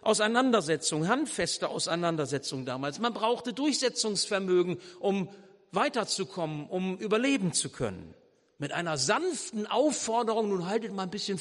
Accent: German